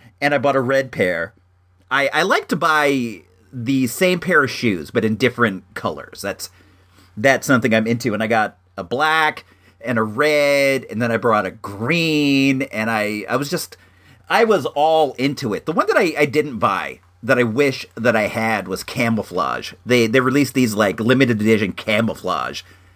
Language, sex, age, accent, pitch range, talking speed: English, male, 40-59, American, 105-145 Hz, 190 wpm